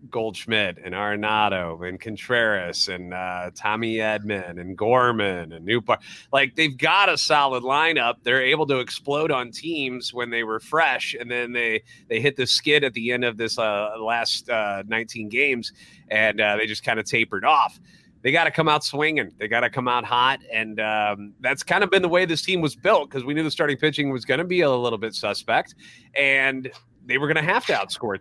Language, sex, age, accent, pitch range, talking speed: English, male, 30-49, American, 110-145 Hz, 215 wpm